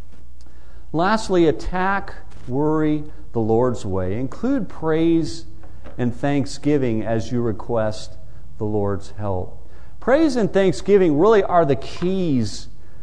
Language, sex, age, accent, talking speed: English, male, 50-69, American, 105 wpm